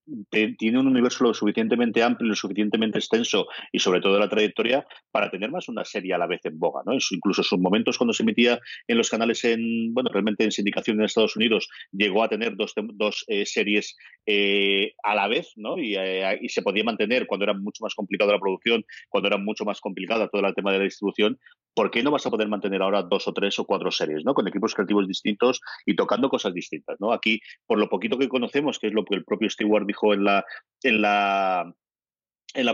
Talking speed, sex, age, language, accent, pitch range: 225 wpm, male, 30-49, Spanish, Spanish, 100-120 Hz